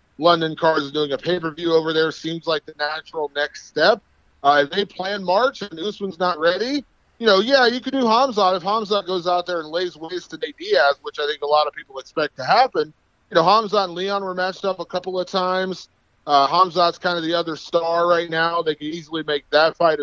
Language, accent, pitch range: English, American, 160-205 Hz